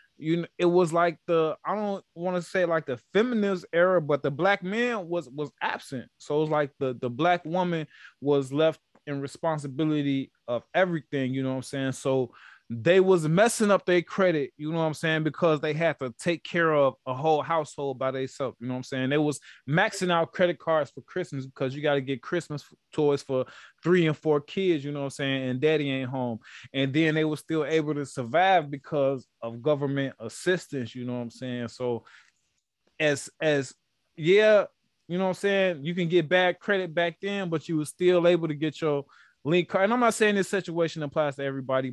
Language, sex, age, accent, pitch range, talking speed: English, male, 20-39, American, 135-180 Hz, 215 wpm